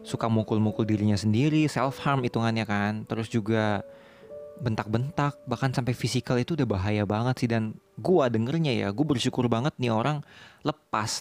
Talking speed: 150 wpm